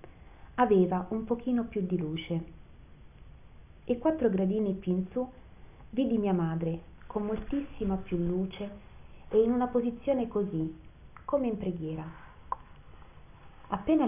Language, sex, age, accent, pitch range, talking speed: Italian, female, 30-49, native, 175-225 Hz, 120 wpm